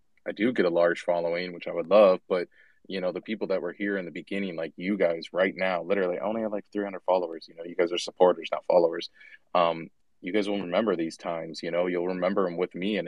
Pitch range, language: 85-95 Hz, English